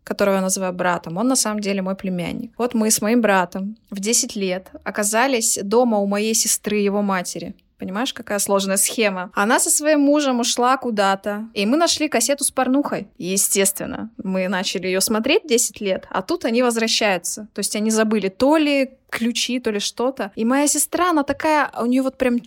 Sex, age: female, 20-39